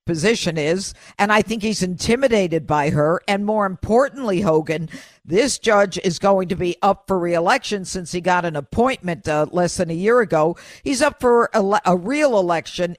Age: 50-69